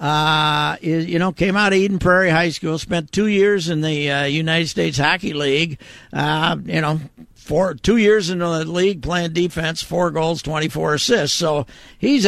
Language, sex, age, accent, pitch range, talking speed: English, male, 60-79, American, 150-190 Hz, 185 wpm